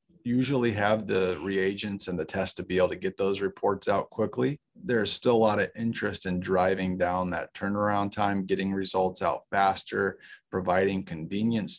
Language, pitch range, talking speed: English, 95-110 Hz, 175 wpm